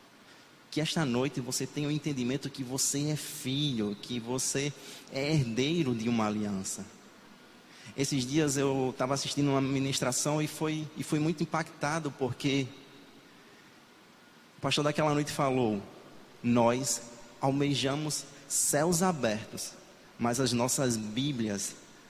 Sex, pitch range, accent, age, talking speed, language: male, 125-145 Hz, Brazilian, 20-39, 120 wpm, Portuguese